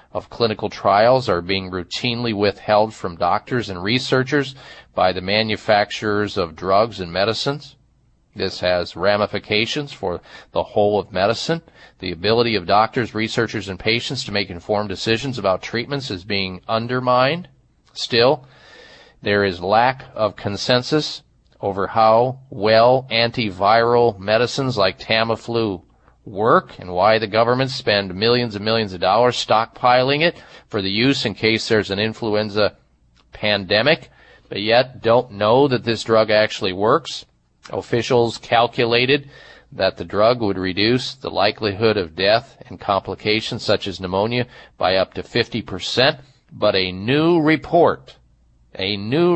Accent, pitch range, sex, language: American, 100-125 Hz, male, English